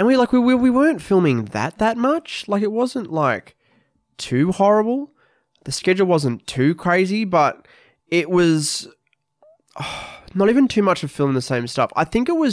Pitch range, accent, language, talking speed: 130-185 Hz, Australian, English, 180 wpm